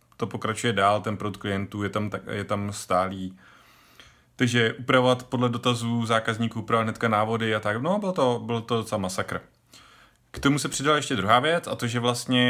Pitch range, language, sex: 105-120 Hz, Czech, male